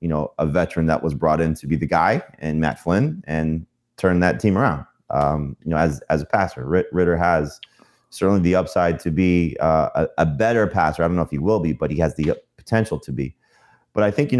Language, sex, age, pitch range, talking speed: English, male, 30-49, 80-95 Hz, 240 wpm